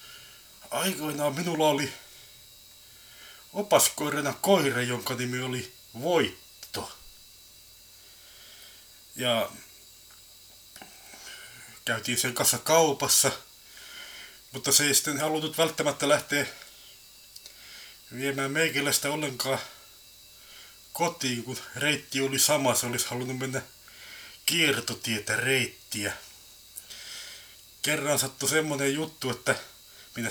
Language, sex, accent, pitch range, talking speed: Finnish, male, native, 115-145 Hz, 80 wpm